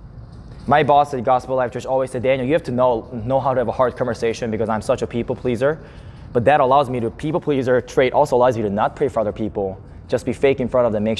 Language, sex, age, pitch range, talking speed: English, male, 20-39, 125-180 Hz, 275 wpm